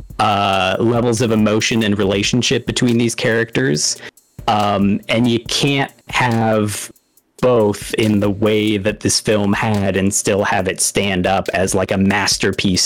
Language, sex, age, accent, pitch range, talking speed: English, male, 30-49, American, 105-120 Hz, 150 wpm